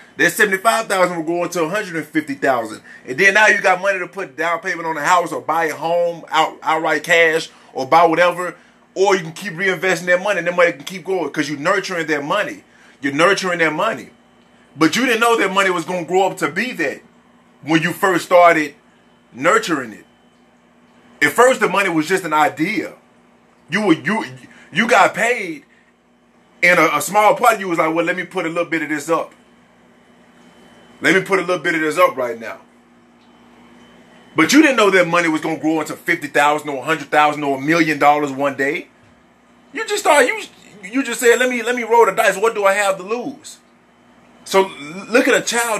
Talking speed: 210 wpm